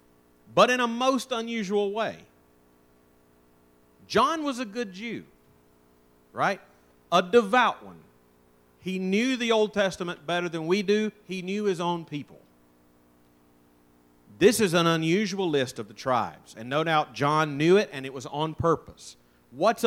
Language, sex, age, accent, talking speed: English, male, 40-59, American, 150 wpm